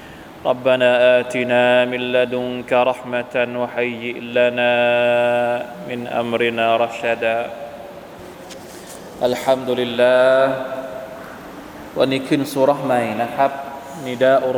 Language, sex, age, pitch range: Thai, male, 20-39, 125-145 Hz